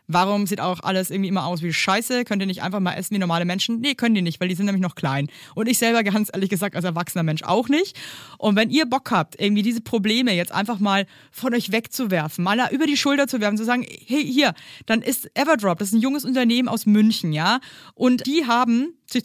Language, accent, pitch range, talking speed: German, German, 185-240 Hz, 245 wpm